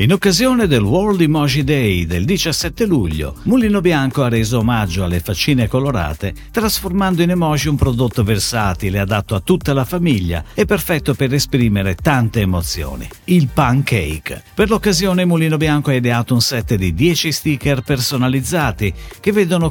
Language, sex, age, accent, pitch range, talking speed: Italian, male, 50-69, native, 95-160 Hz, 150 wpm